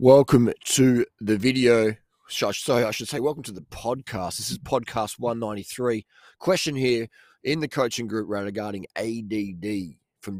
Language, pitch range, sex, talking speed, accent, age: English, 95-125 Hz, male, 145 wpm, Australian, 30-49